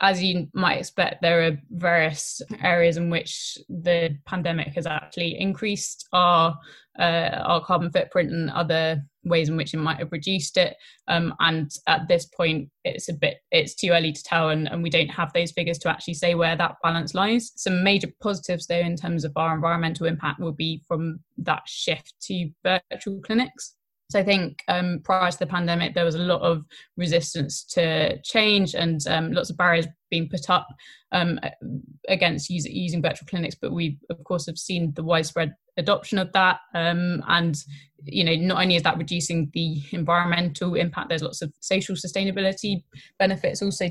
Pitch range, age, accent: 160-180 Hz, 20-39, British